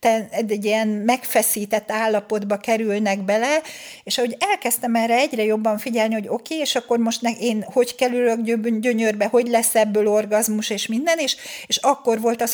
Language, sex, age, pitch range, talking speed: Hungarian, female, 60-79, 215-255 Hz, 165 wpm